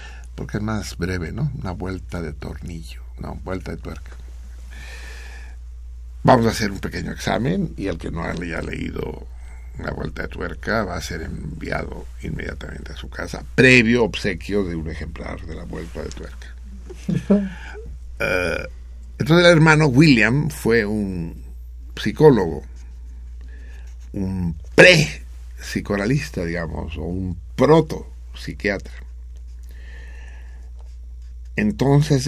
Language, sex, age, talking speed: Spanish, male, 60-79, 115 wpm